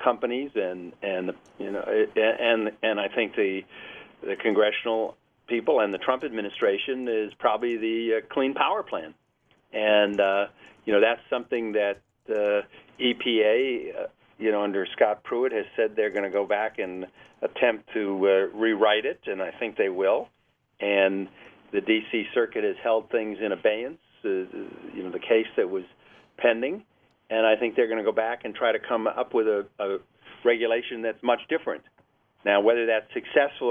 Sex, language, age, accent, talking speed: male, English, 50-69, American, 175 wpm